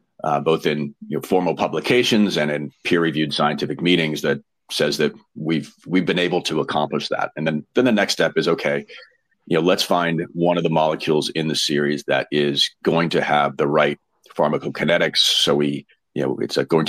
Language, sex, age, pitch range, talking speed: English, male, 40-59, 75-90 Hz, 200 wpm